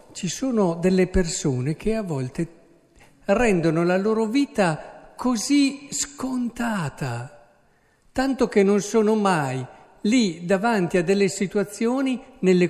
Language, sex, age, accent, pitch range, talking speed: Italian, male, 50-69, native, 155-215 Hz, 115 wpm